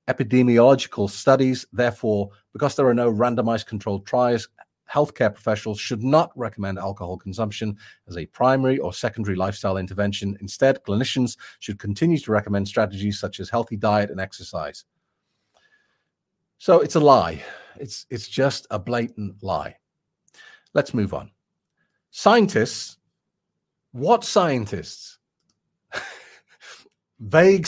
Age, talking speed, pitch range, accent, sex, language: 40-59, 115 wpm, 105-150 Hz, British, male, English